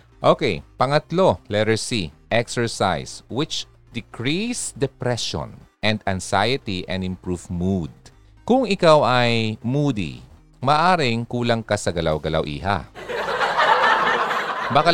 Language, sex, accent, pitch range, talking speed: Filipino, male, native, 85-120 Hz, 95 wpm